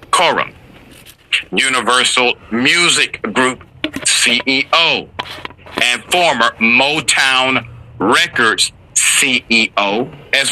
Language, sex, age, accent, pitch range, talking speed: English, male, 50-69, American, 115-150 Hz, 65 wpm